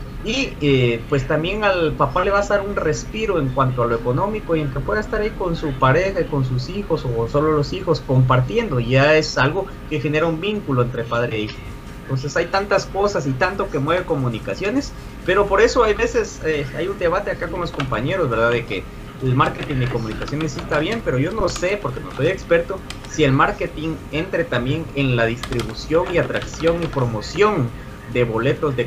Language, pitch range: Spanish, 130-170 Hz